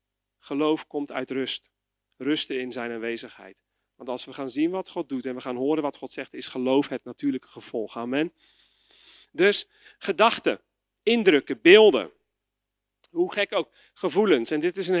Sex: male